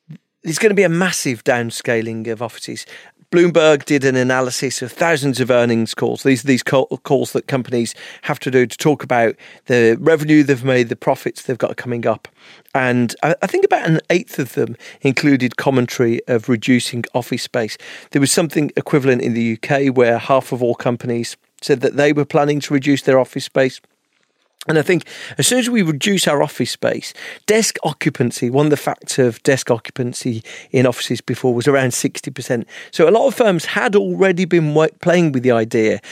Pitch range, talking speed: 125-155 Hz, 190 wpm